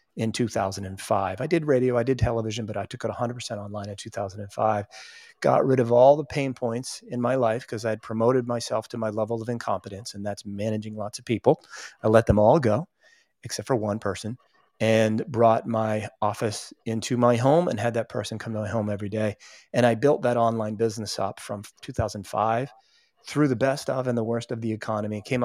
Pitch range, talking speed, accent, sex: 110-130 Hz, 205 wpm, American, male